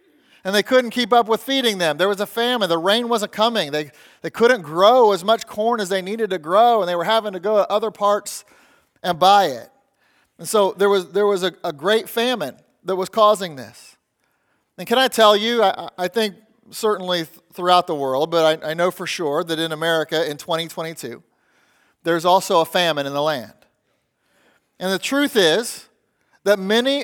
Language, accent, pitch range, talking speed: English, American, 175-220 Hz, 200 wpm